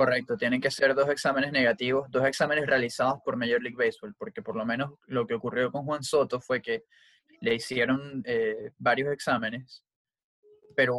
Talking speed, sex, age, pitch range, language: 175 wpm, male, 20-39, 120-145 Hz, English